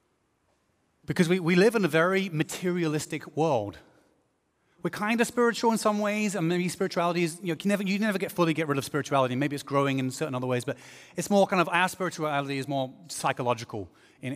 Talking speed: 210 wpm